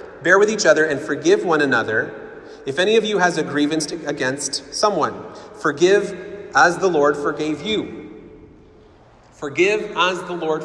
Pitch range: 160-265 Hz